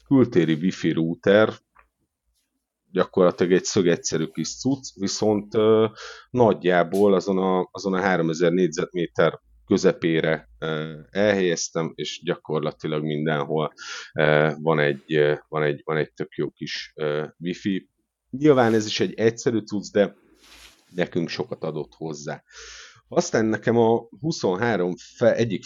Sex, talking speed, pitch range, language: male, 105 wpm, 80-105 Hz, Hungarian